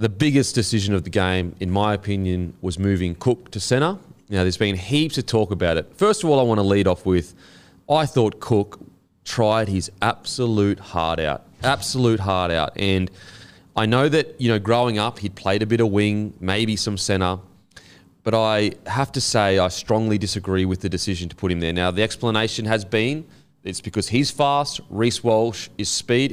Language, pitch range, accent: English, 95-120 Hz, Australian